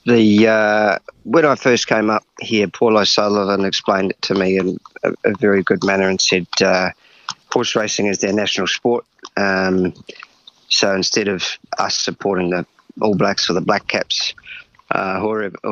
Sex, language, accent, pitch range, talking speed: male, English, Australian, 95-110 Hz, 165 wpm